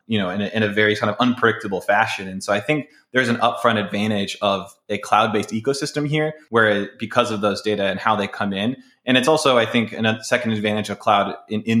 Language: English